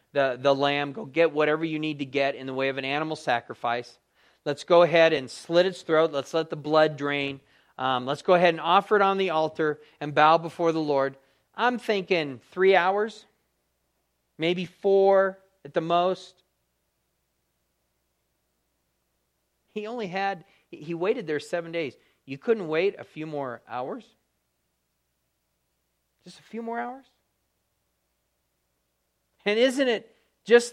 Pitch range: 130-210 Hz